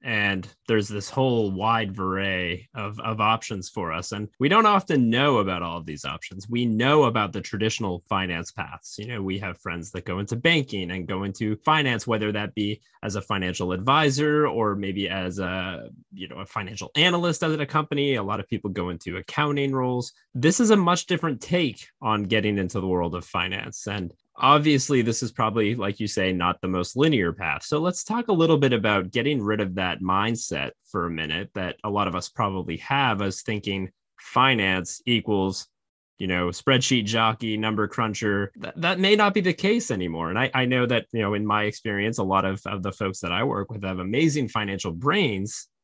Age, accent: 20-39, American